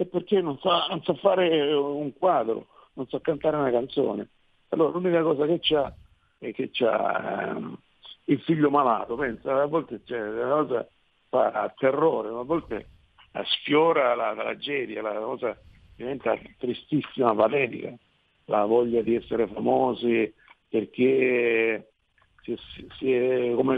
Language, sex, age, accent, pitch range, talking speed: Italian, male, 50-69, native, 105-150 Hz, 140 wpm